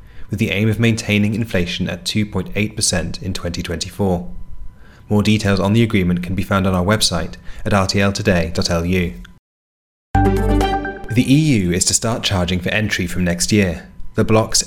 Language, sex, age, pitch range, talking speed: English, male, 30-49, 90-110 Hz, 145 wpm